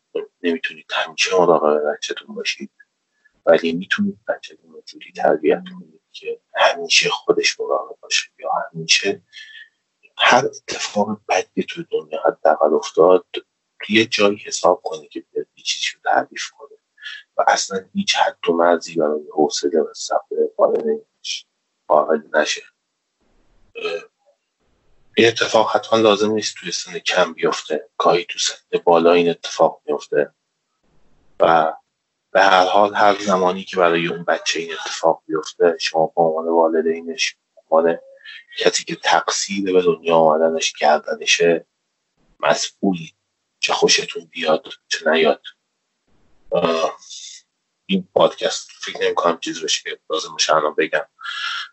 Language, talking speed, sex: Persian, 115 wpm, male